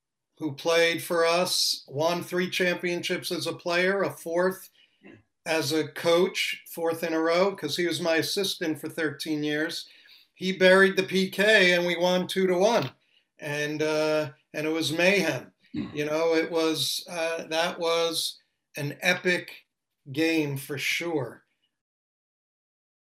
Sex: male